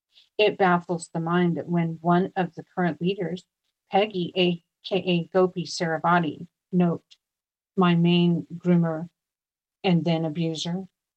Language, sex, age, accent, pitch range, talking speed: English, female, 50-69, American, 165-190 Hz, 120 wpm